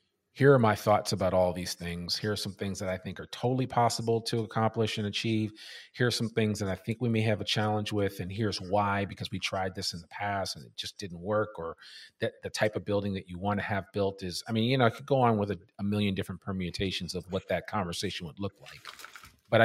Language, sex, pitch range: English, male, 95-110 Hz